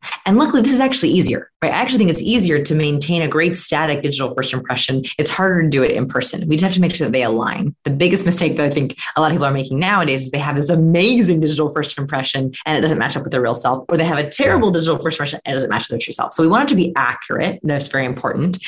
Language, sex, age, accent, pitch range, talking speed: English, female, 30-49, American, 140-185 Hz, 290 wpm